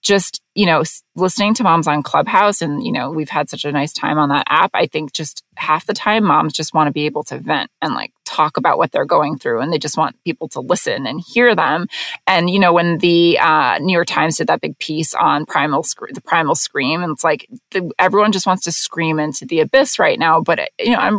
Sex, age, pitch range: female, 20-39, 155-210 Hz